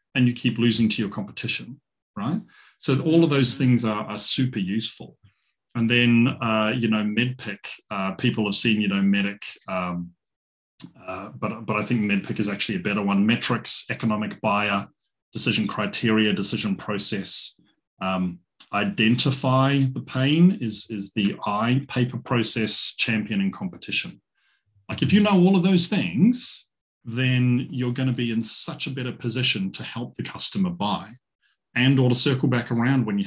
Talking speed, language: 165 wpm, English